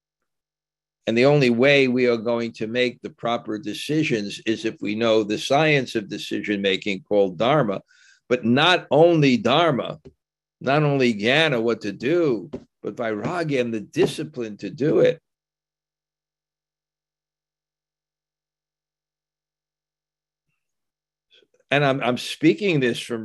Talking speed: 120 wpm